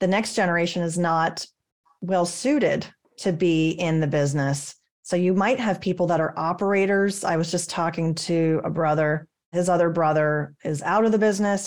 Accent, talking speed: American, 175 wpm